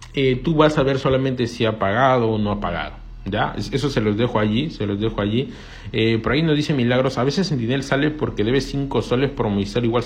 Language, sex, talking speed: Spanish, male, 235 wpm